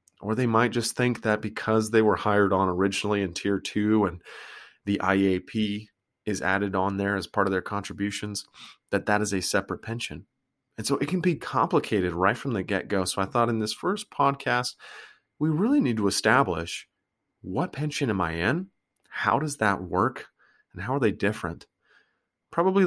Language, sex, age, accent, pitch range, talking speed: English, male, 30-49, American, 95-125 Hz, 185 wpm